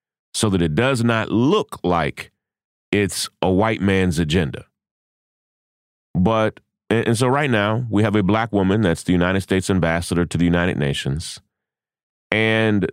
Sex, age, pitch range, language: male, 30-49, 95-135 Hz, English